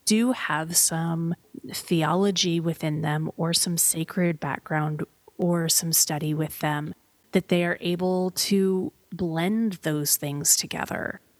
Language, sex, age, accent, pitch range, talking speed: English, female, 30-49, American, 170-205 Hz, 125 wpm